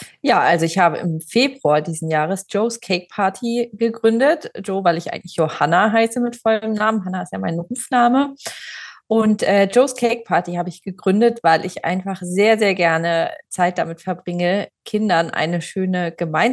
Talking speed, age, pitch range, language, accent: 165 wpm, 30-49, 175-220 Hz, German, German